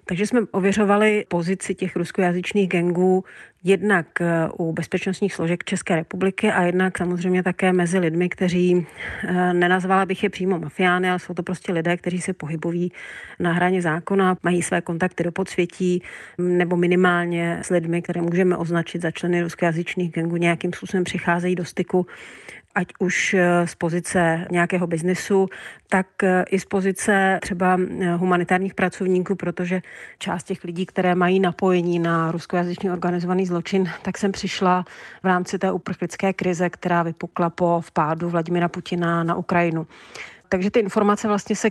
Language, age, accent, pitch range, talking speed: Czech, 40-59, native, 175-190 Hz, 150 wpm